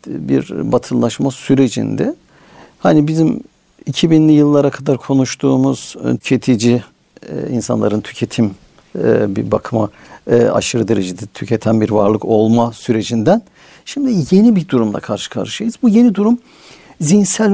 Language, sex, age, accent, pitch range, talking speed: Turkish, male, 60-79, native, 120-175 Hz, 105 wpm